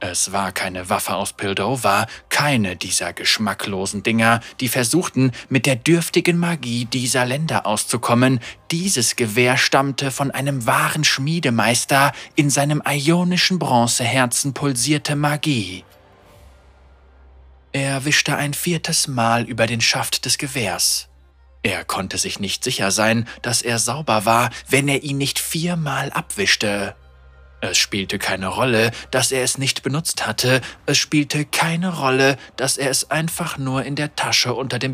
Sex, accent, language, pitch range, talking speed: male, German, German, 105-145 Hz, 145 wpm